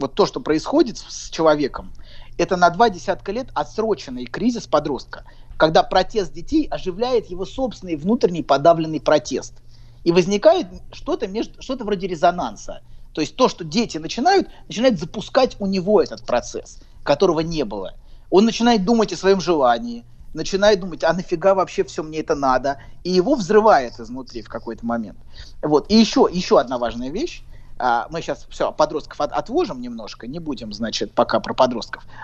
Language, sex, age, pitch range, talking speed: Russian, male, 30-49, 150-220 Hz, 155 wpm